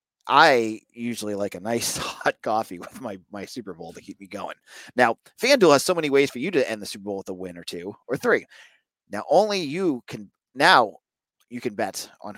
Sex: male